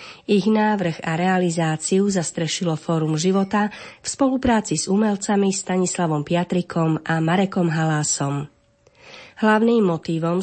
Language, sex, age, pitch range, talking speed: Slovak, female, 30-49, 165-205 Hz, 105 wpm